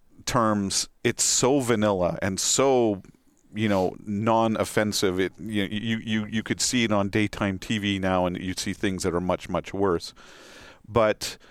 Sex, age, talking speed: male, 40-59, 160 wpm